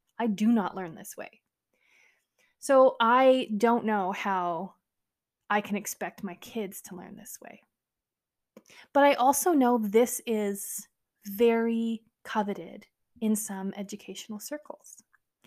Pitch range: 200-245 Hz